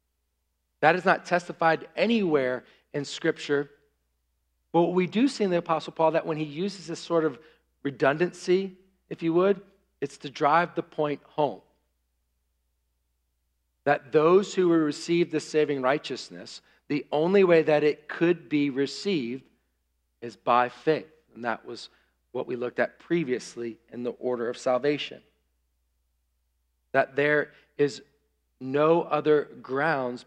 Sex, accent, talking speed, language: male, American, 140 wpm, English